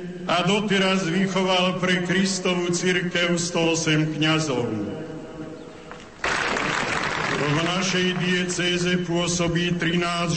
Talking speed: 75 wpm